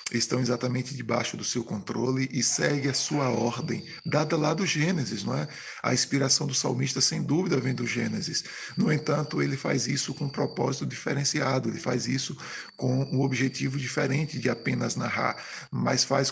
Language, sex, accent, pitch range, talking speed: Portuguese, male, Brazilian, 120-140 Hz, 175 wpm